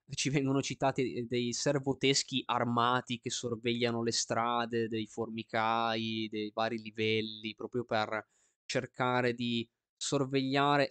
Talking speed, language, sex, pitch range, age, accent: 110 wpm, Italian, male, 110-130 Hz, 20-39, native